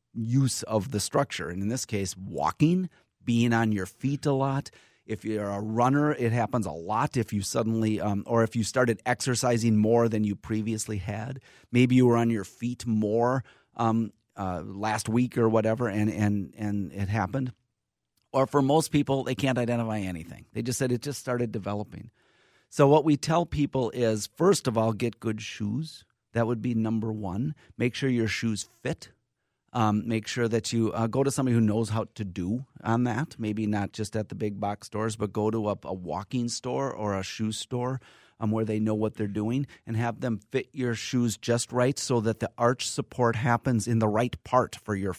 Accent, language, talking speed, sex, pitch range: American, English, 205 wpm, male, 105-125 Hz